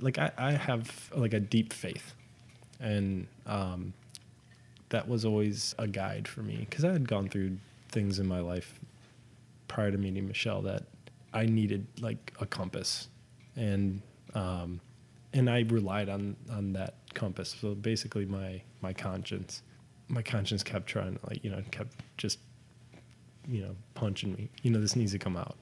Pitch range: 100-120 Hz